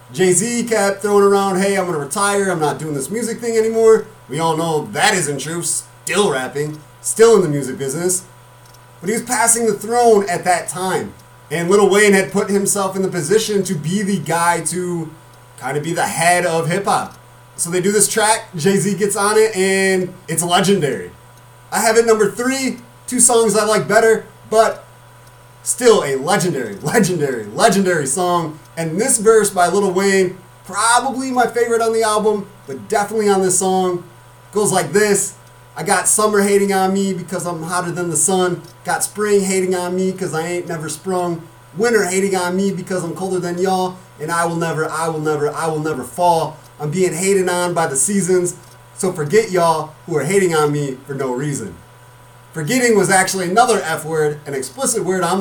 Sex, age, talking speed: male, 30-49, 195 wpm